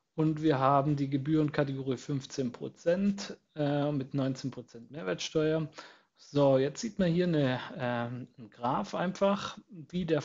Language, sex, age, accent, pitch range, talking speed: German, male, 40-59, German, 145-175 Hz, 140 wpm